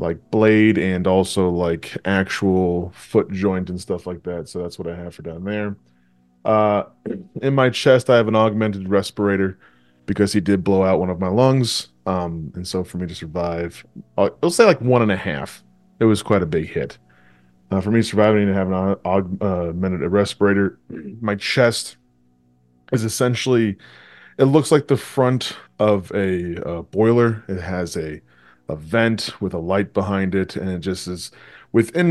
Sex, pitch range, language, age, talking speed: male, 90-110 Hz, English, 20-39, 180 wpm